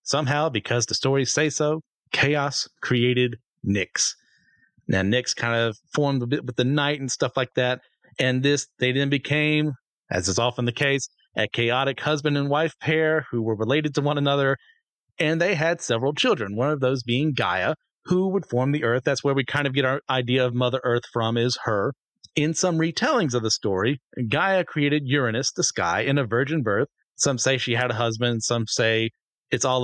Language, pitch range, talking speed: English, 125-155 Hz, 200 wpm